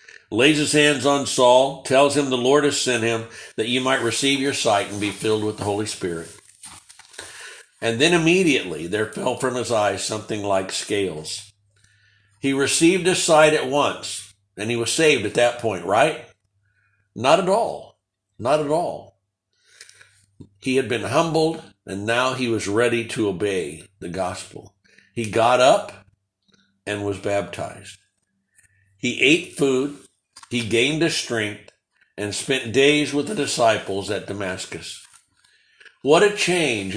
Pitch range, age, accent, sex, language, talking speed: 105-140 Hz, 60-79, American, male, English, 150 wpm